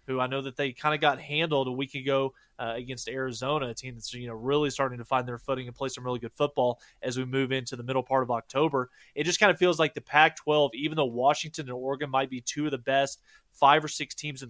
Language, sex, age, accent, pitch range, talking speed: English, male, 20-39, American, 130-155 Hz, 270 wpm